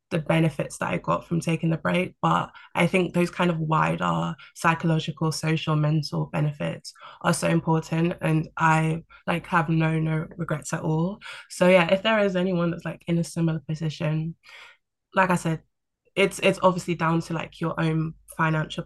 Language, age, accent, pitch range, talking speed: English, 20-39, British, 155-175 Hz, 180 wpm